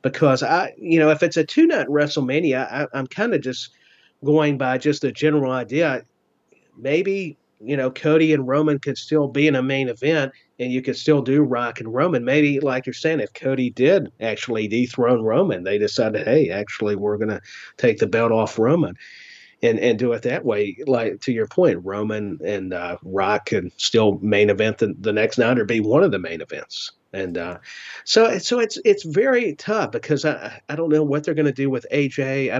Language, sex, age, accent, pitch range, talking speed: English, male, 40-59, American, 115-155 Hz, 210 wpm